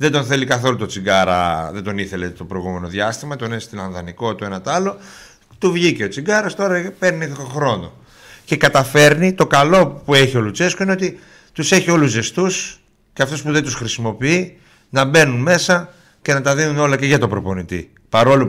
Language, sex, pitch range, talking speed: Greek, male, 115-175 Hz, 200 wpm